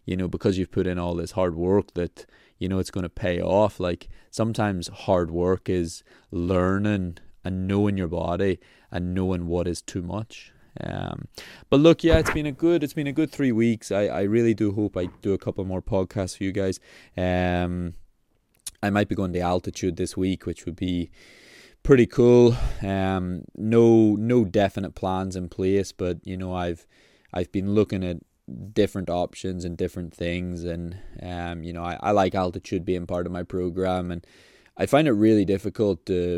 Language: English